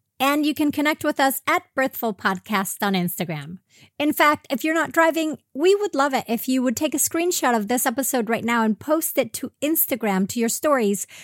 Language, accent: English, American